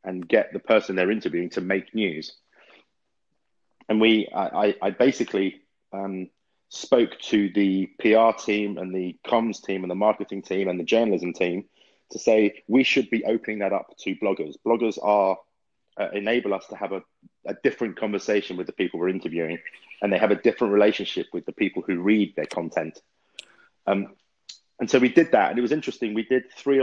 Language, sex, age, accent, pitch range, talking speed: Italian, male, 30-49, British, 95-110 Hz, 190 wpm